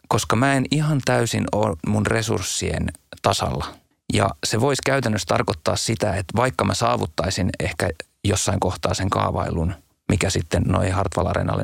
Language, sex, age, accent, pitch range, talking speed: Finnish, male, 30-49, native, 90-110 Hz, 150 wpm